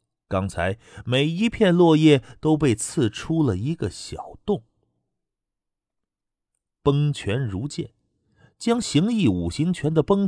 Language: Chinese